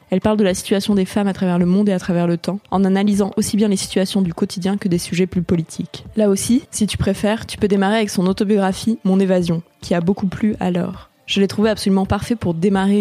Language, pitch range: French, 185-210 Hz